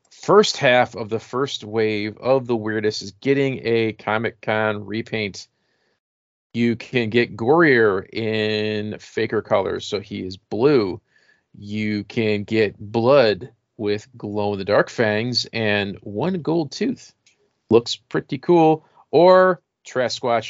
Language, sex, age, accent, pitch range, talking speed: English, male, 40-59, American, 105-130 Hz, 120 wpm